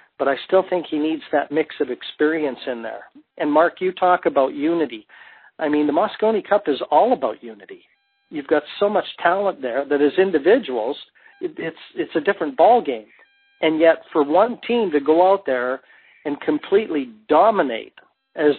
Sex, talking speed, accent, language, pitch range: male, 175 wpm, American, English, 140-185 Hz